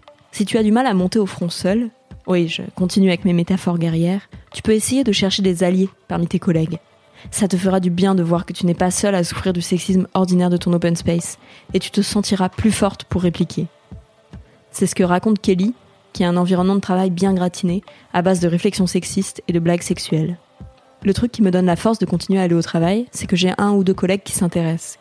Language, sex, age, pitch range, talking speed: French, female, 20-39, 175-200 Hz, 240 wpm